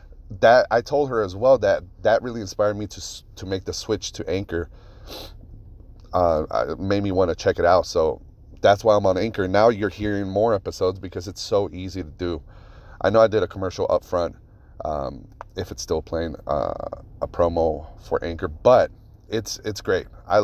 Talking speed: 195 wpm